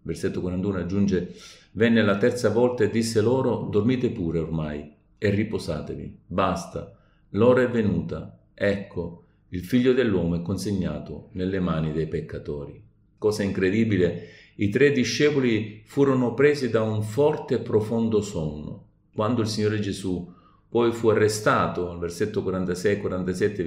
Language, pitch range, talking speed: Italian, 90-120 Hz, 130 wpm